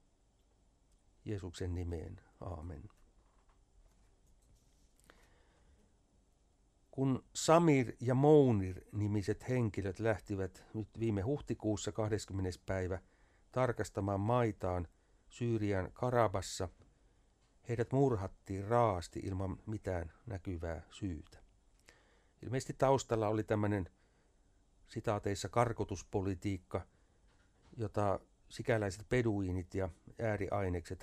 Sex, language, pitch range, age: male, Finnish, 95-110 Hz, 60-79